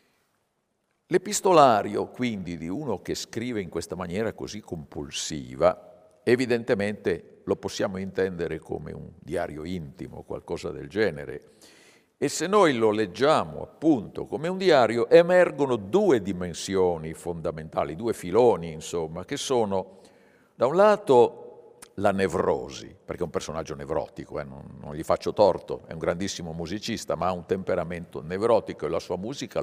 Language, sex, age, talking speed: Italian, male, 50-69, 140 wpm